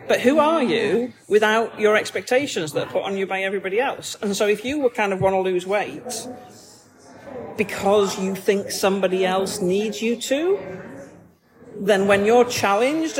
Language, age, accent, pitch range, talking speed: English, 40-59, British, 185-225 Hz, 175 wpm